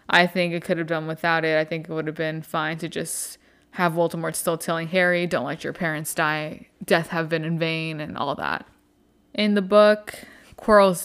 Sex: female